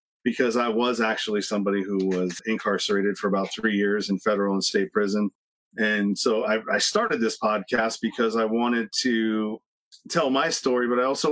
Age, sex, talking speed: 40-59, male, 180 wpm